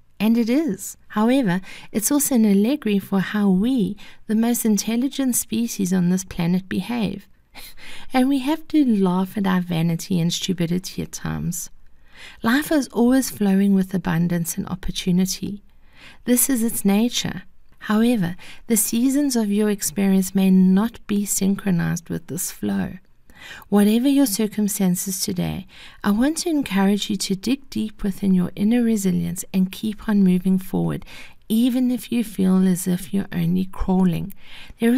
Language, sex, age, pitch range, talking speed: English, female, 50-69, 185-225 Hz, 150 wpm